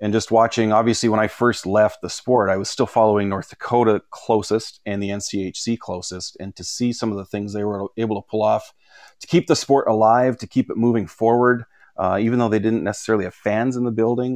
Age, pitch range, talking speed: 30-49, 100-115 Hz, 230 wpm